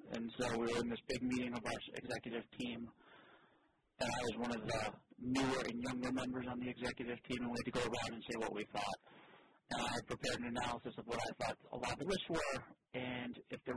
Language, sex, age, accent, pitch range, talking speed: English, male, 40-59, American, 115-125 Hz, 240 wpm